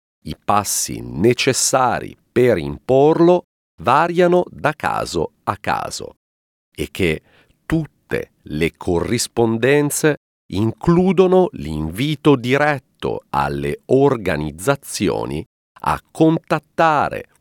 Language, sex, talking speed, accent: Italian, male, 75 wpm, native